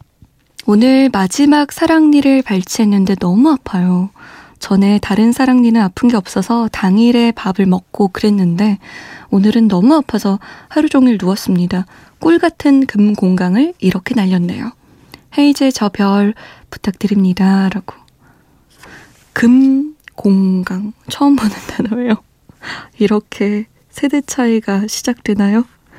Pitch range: 195-270 Hz